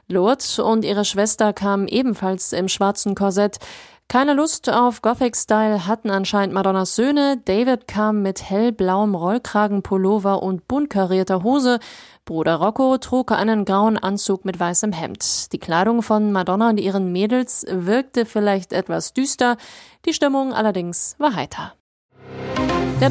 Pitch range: 195-230 Hz